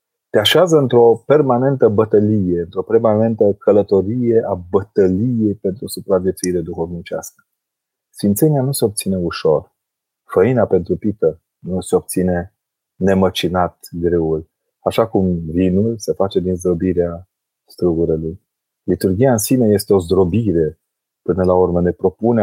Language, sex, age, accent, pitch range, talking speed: Romanian, male, 30-49, native, 90-115 Hz, 120 wpm